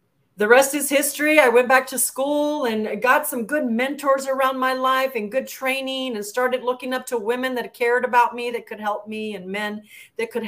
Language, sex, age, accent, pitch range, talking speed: English, female, 40-59, American, 205-250 Hz, 220 wpm